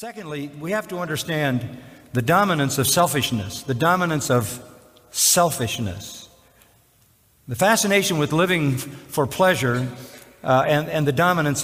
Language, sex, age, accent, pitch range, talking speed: English, male, 50-69, American, 125-170 Hz, 125 wpm